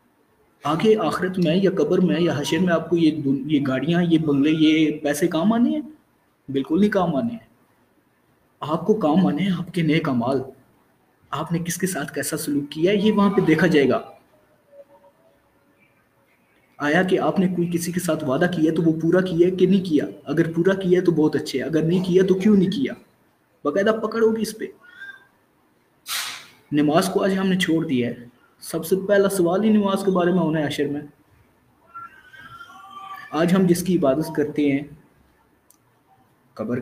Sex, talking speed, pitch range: male, 185 wpm, 145-190 Hz